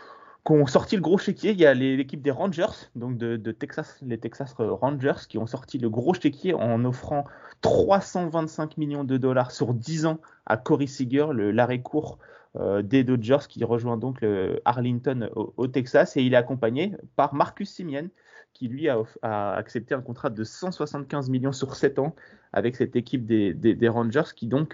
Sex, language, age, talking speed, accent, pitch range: male, French, 30-49, 190 wpm, French, 115-150 Hz